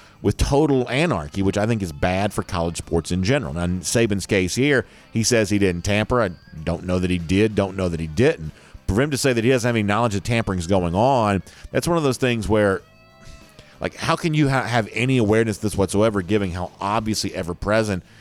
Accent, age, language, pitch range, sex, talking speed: American, 40-59, English, 90-120 Hz, male, 225 wpm